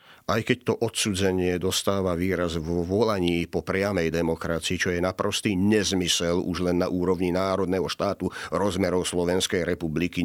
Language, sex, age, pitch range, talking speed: Slovak, male, 50-69, 90-115 Hz, 140 wpm